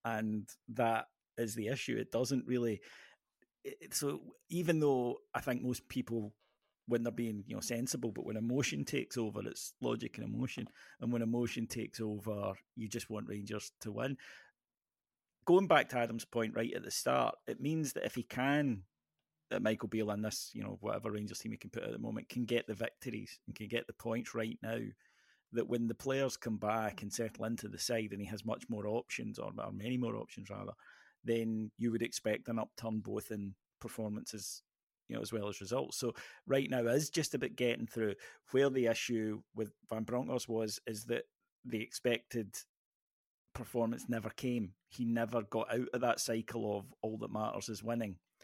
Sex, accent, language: male, British, English